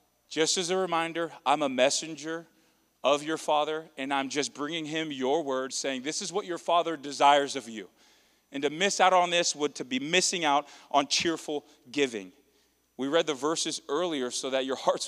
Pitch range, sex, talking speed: 130-160 Hz, male, 195 wpm